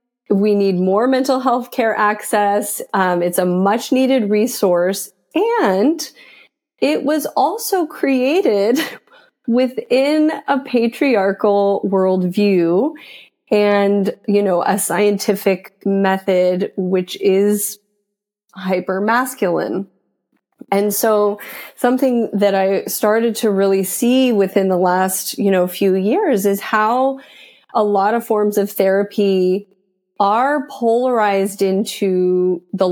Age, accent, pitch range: 30-49, American, 190-235 Hz